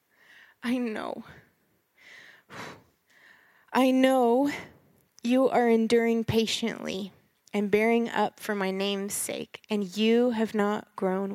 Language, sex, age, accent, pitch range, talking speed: English, female, 20-39, American, 200-235 Hz, 105 wpm